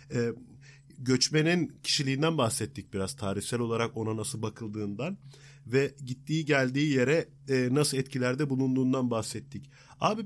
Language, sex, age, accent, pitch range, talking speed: Turkish, male, 40-59, native, 120-150 Hz, 125 wpm